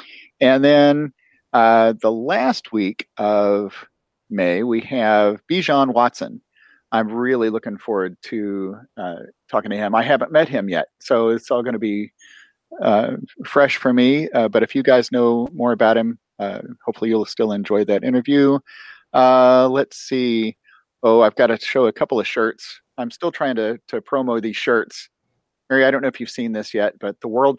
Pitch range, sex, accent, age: 115-135 Hz, male, American, 40-59